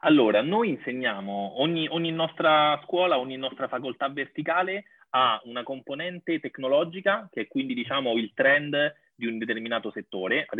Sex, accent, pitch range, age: male, Italian, 110-175 Hz, 30-49